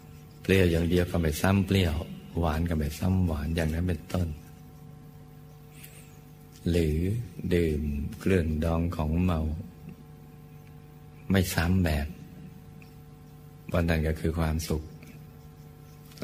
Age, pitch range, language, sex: 60-79, 75-90 Hz, Thai, male